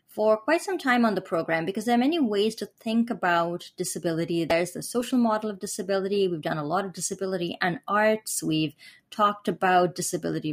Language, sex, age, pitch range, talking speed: English, female, 30-49, 180-225 Hz, 195 wpm